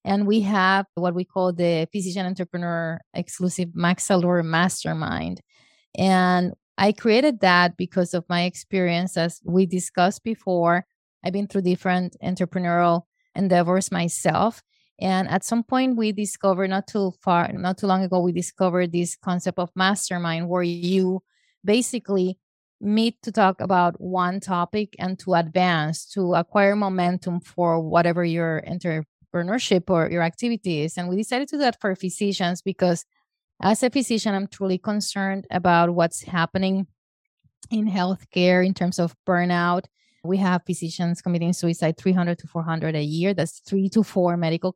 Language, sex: English, female